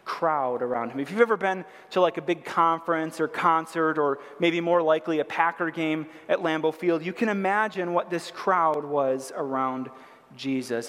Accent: American